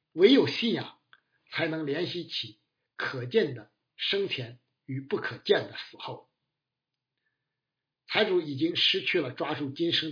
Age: 60-79